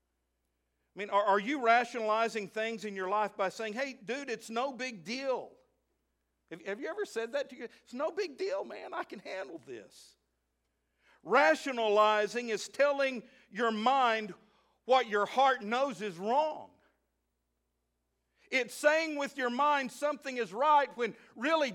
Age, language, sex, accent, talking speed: 50-69, English, male, American, 155 wpm